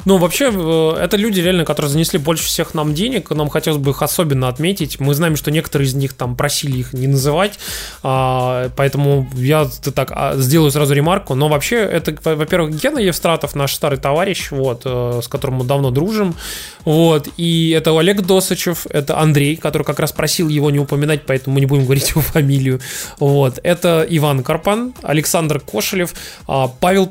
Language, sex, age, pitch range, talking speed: Russian, male, 20-39, 135-175 Hz, 170 wpm